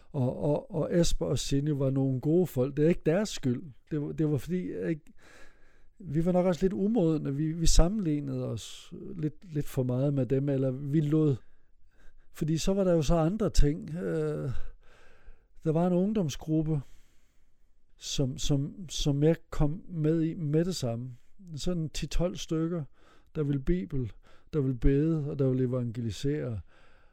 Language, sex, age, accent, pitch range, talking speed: Danish, male, 60-79, native, 130-160 Hz, 165 wpm